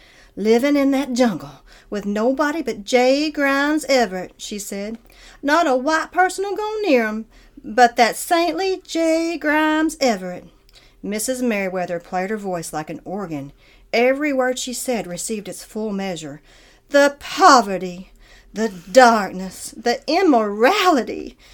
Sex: female